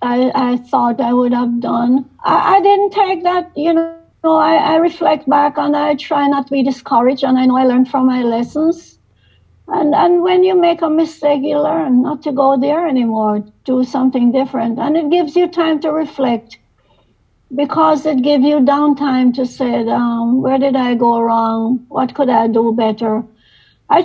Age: 60-79